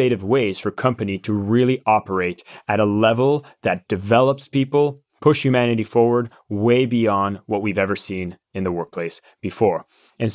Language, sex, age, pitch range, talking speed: English, male, 20-39, 105-125 Hz, 150 wpm